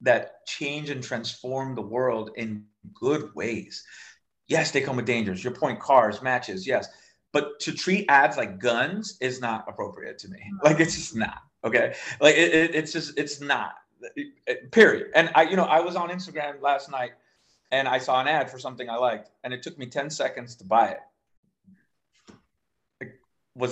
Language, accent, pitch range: English, American, 140-215 Hz